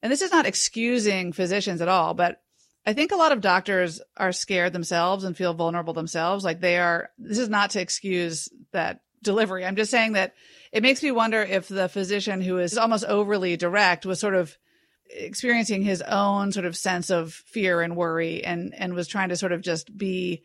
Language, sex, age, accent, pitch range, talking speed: English, female, 40-59, American, 175-215 Hz, 205 wpm